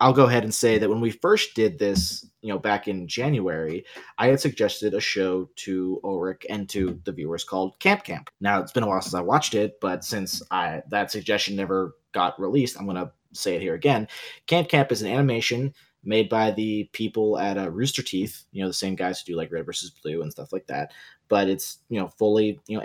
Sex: male